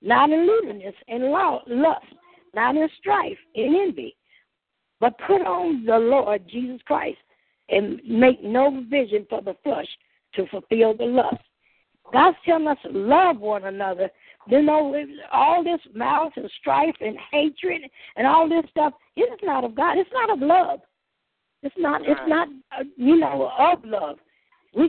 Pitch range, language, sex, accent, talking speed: 250-330 Hz, English, female, American, 155 wpm